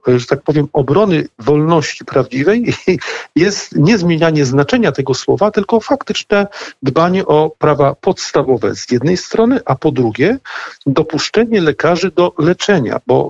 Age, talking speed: 50-69, 130 wpm